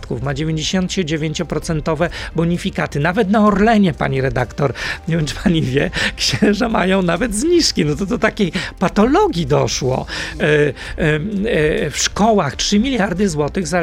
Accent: native